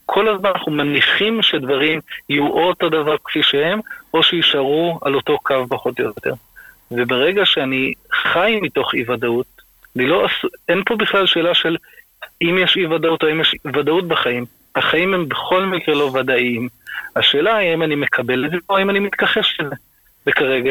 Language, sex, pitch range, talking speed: Hebrew, male, 130-165 Hz, 175 wpm